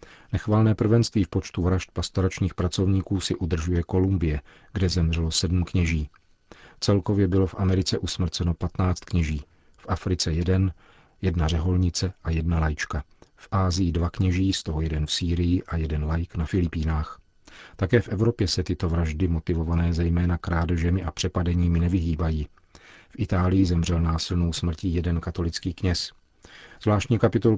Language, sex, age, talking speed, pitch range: Czech, male, 40-59, 140 wpm, 85-95 Hz